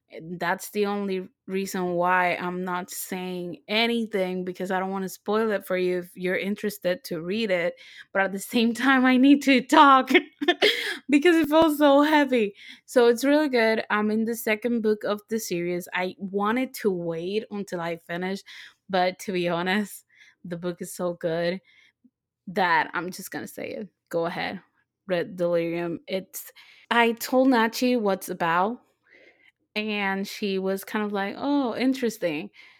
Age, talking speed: 20-39, 165 wpm